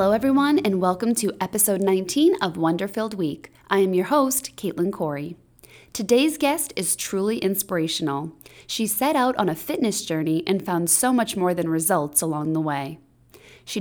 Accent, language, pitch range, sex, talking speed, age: American, English, 170-235 Hz, female, 170 wpm, 20-39